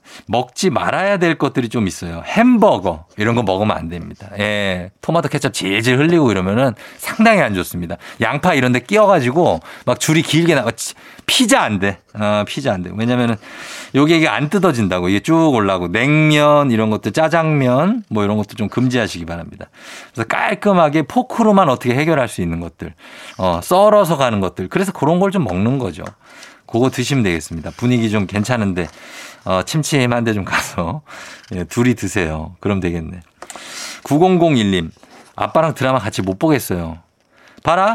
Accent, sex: native, male